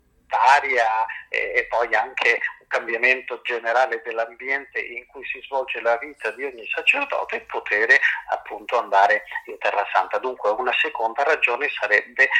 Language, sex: Italian, male